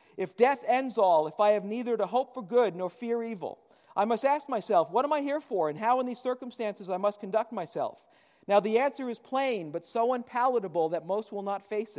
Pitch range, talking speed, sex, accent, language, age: 195-245 Hz, 230 wpm, male, American, English, 50-69